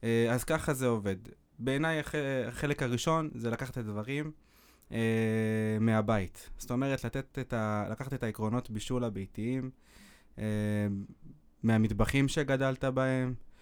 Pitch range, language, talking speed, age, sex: 105-130 Hz, Hebrew, 120 wpm, 20-39, male